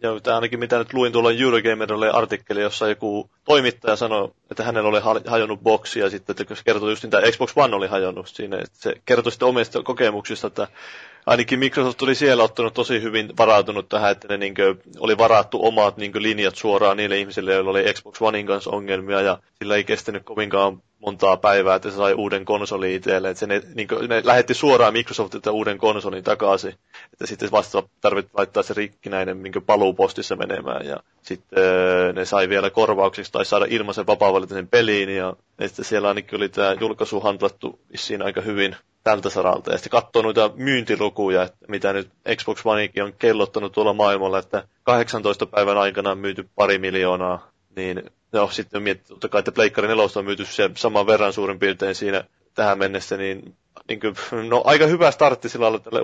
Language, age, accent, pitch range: Finnish, 30-49, native, 95-115 Hz